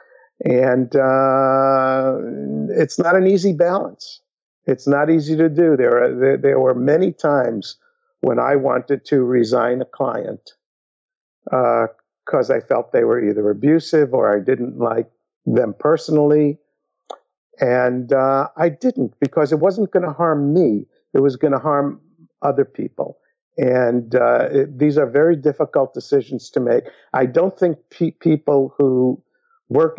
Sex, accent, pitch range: male, American, 130-175 Hz